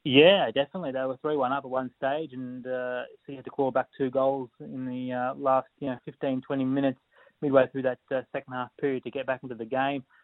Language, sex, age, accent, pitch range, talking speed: English, male, 20-39, Australian, 120-135 Hz, 235 wpm